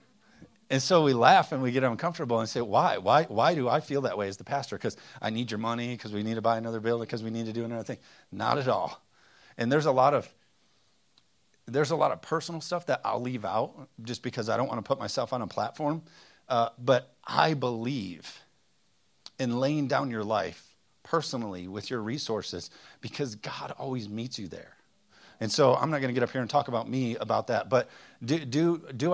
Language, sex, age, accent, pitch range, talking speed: English, male, 40-59, American, 105-135 Hz, 220 wpm